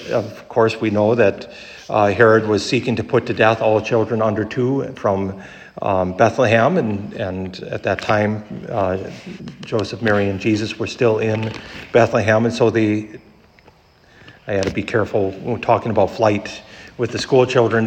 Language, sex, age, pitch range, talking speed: English, male, 50-69, 105-120 Hz, 165 wpm